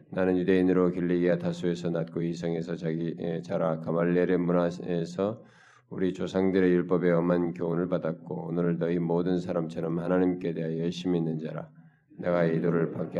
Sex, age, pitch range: male, 20-39, 85-90 Hz